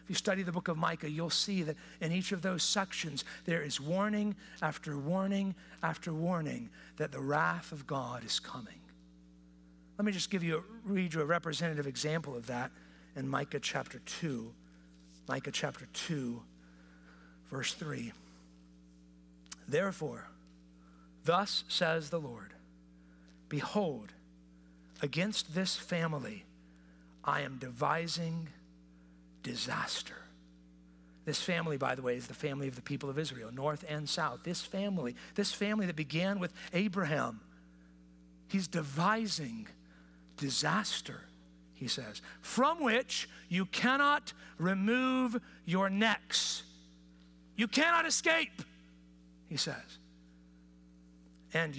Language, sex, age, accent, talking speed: English, male, 50-69, American, 120 wpm